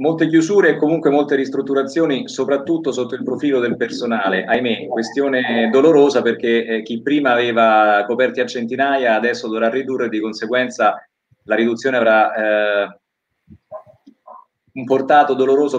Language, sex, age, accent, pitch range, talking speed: Italian, male, 30-49, native, 115-140 Hz, 135 wpm